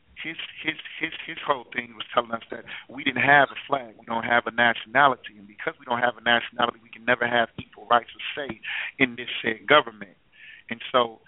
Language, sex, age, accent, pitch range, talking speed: English, male, 40-59, American, 110-125 Hz, 220 wpm